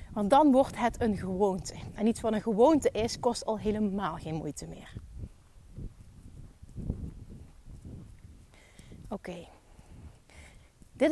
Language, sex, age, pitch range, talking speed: Dutch, female, 30-49, 200-260 Hz, 115 wpm